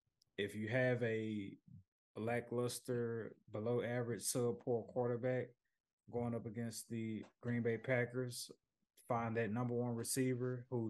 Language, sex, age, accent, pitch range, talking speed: English, male, 20-39, American, 105-120 Hz, 115 wpm